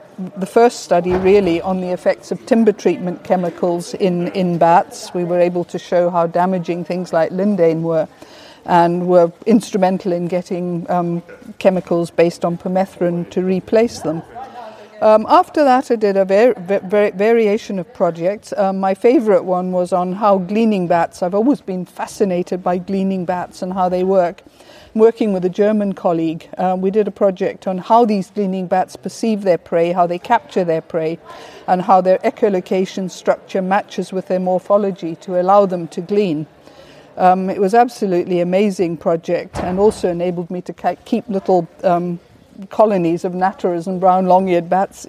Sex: female